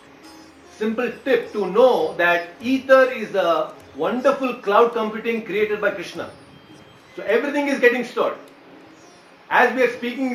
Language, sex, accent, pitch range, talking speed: English, male, Indian, 165-245 Hz, 135 wpm